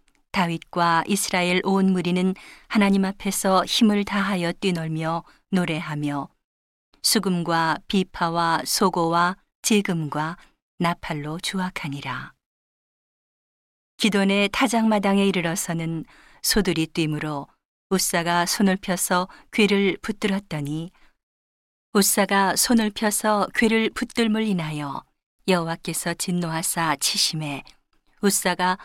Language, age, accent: Korean, 40-59, native